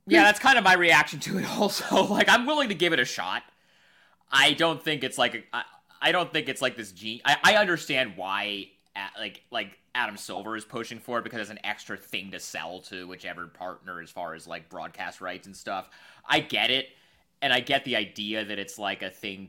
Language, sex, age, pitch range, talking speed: English, male, 30-49, 105-150 Hz, 225 wpm